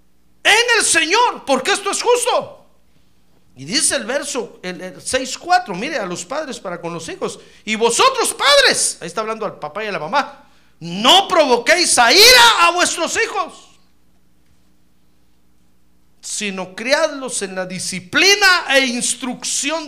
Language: Spanish